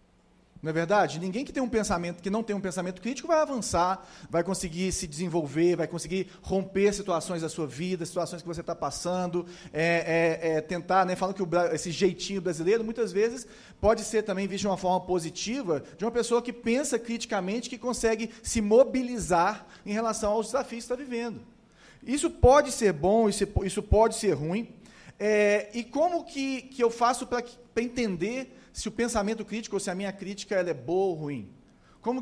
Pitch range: 170-225 Hz